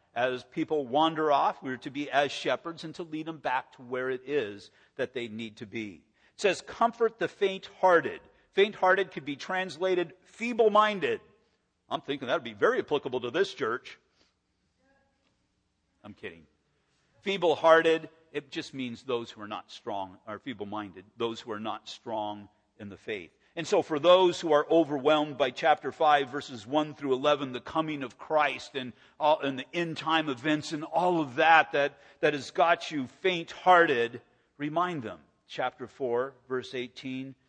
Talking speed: 170 wpm